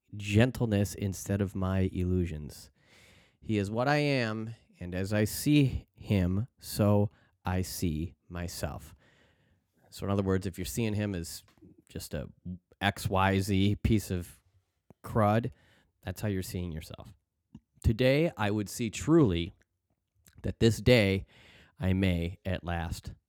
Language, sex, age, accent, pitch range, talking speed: English, male, 30-49, American, 90-110 Hz, 130 wpm